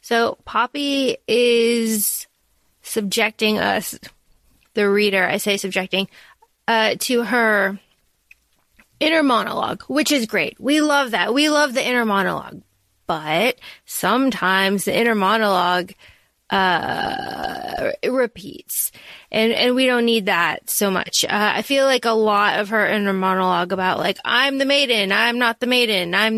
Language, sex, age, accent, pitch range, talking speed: English, female, 20-39, American, 200-250 Hz, 140 wpm